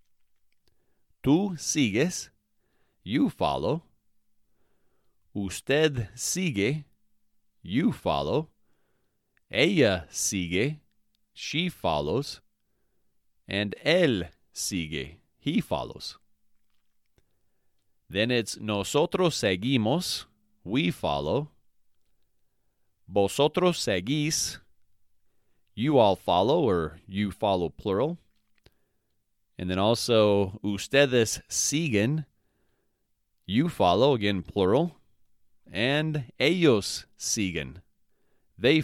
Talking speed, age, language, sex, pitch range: 70 wpm, 30-49, English, male, 100-135 Hz